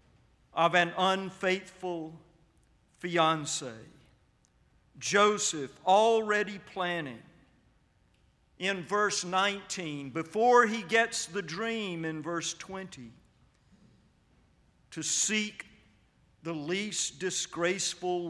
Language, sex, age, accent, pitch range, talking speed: English, male, 50-69, American, 140-185 Hz, 75 wpm